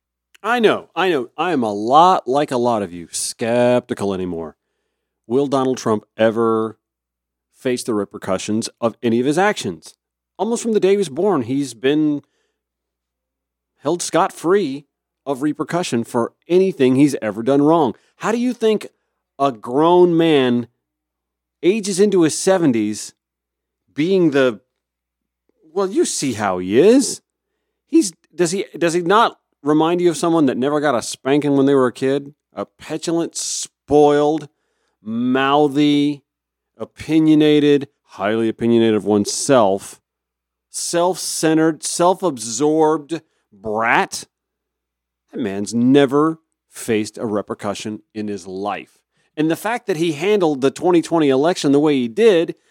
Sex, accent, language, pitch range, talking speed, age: male, American, English, 110-170 Hz, 135 wpm, 40-59